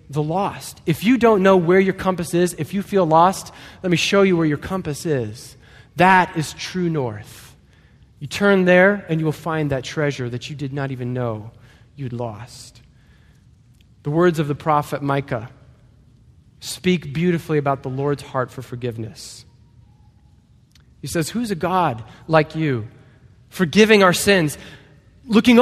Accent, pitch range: American, 130-175 Hz